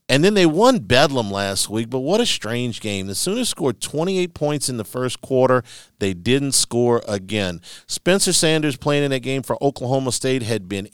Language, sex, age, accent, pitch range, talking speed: English, male, 50-69, American, 100-135 Hz, 195 wpm